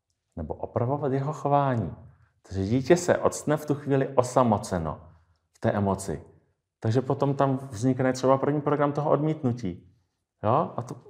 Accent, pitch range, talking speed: native, 95-140 Hz, 145 wpm